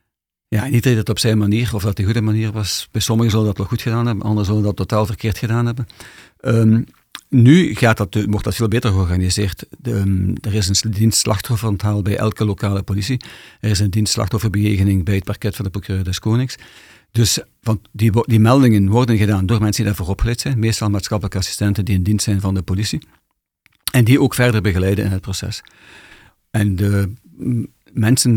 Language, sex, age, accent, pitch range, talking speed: Dutch, male, 50-69, Dutch, 100-115 Hz, 205 wpm